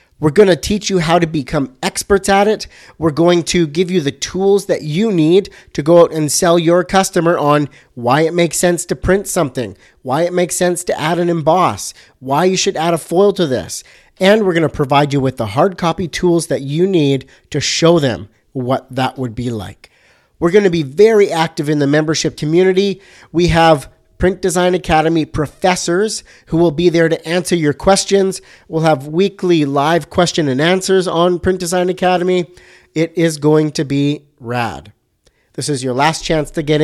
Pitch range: 140-175 Hz